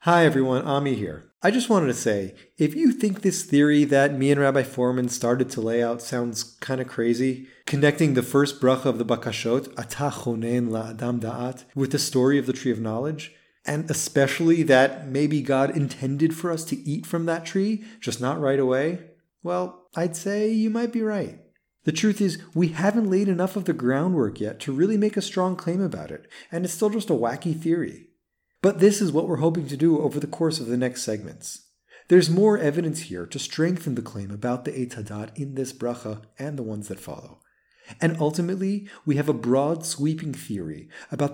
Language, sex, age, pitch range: English, male, 30-49, 125-170 Hz